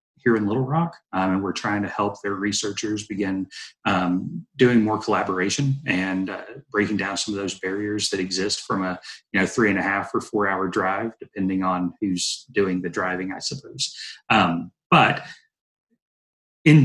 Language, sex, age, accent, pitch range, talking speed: English, male, 30-49, American, 95-115 Hz, 165 wpm